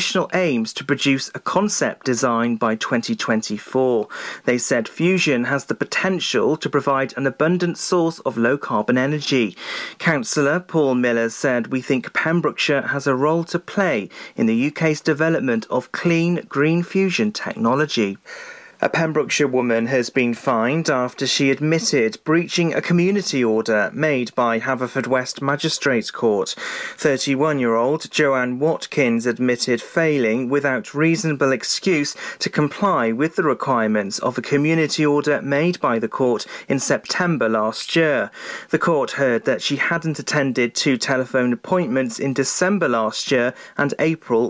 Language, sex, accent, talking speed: English, male, British, 140 wpm